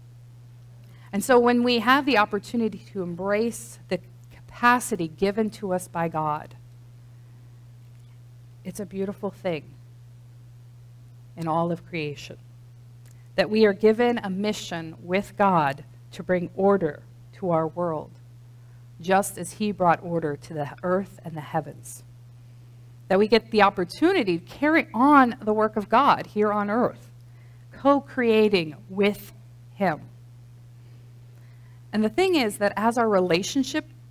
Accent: American